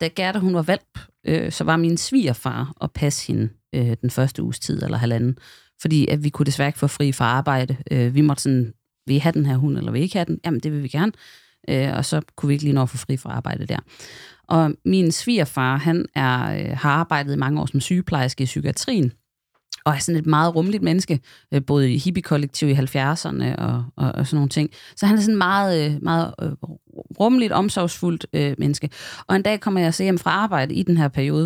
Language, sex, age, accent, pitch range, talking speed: Danish, female, 30-49, native, 135-165 Hz, 230 wpm